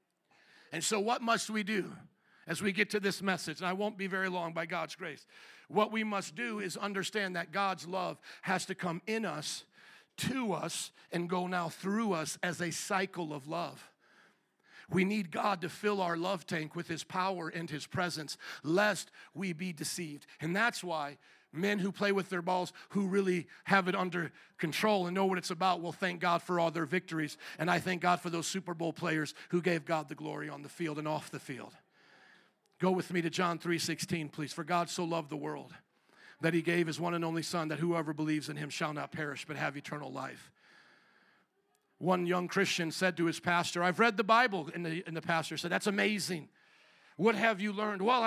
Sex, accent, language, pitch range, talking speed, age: male, American, English, 165-195 Hz, 210 wpm, 50-69